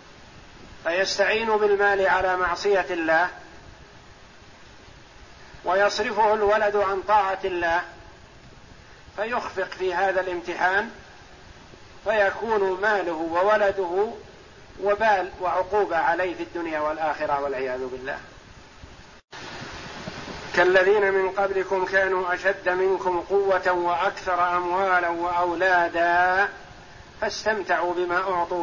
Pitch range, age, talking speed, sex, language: 175-195 Hz, 50-69, 80 wpm, male, Arabic